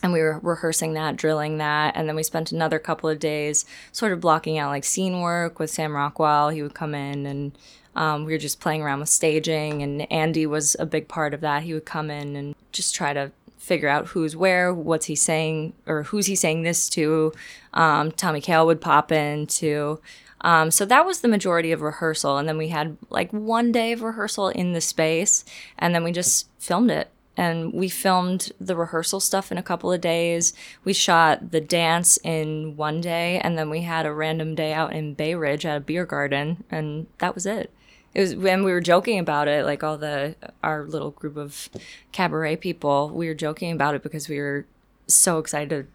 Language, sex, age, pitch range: English, female, 20-39, 150-170 Hz